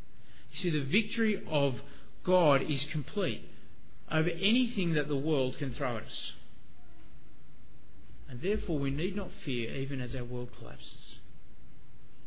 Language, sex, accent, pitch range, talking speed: English, male, Australian, 125-165 Hz, 135 wpm